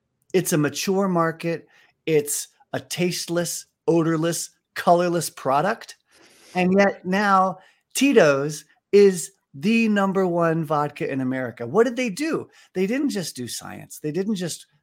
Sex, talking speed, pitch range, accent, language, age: male, 135 wpm, 130-175 Hz, American, English, 40-59